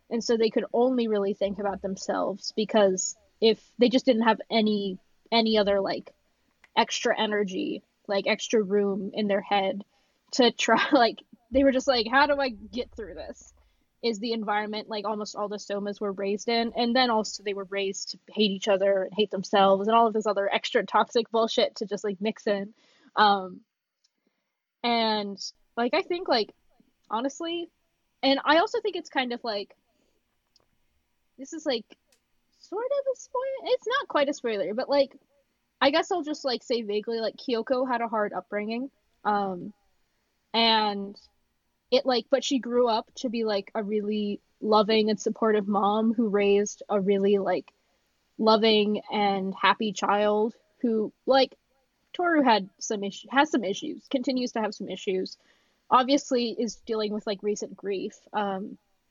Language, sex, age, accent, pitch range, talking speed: English, female, 10-29, American, 205-250 Hz, 170 wpm